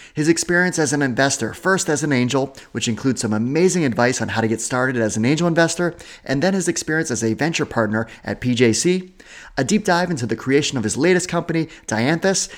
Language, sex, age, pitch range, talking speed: English, male, 30-49, 115-160 Hz, 210 wpm